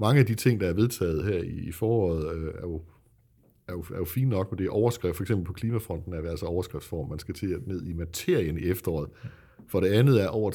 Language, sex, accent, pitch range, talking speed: Danish, male, native, 90-110 Hz, 245 wpm